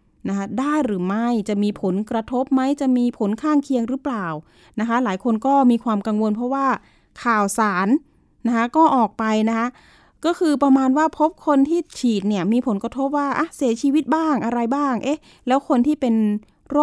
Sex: female